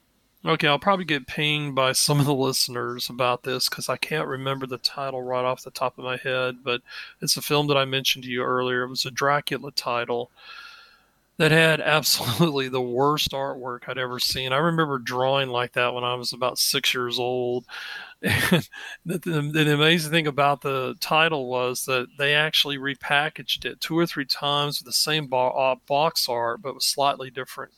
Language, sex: English, male